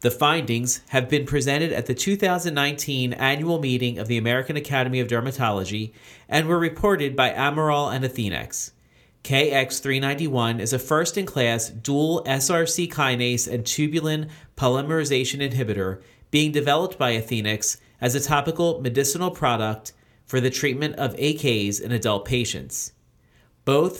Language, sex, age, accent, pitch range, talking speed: English, male, 40-59, American, 120-150 Hz, 130 wpm